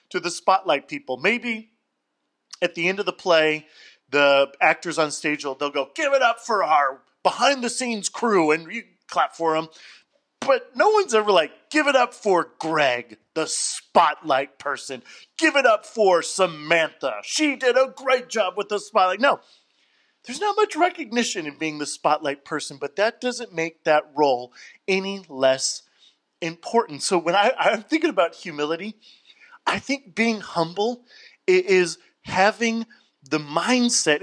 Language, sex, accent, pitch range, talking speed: English, male, American, 160-245 Hz, 160 wpm